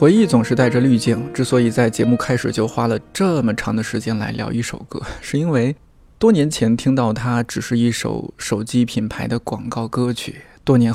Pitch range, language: 115-135 Hz, Chinese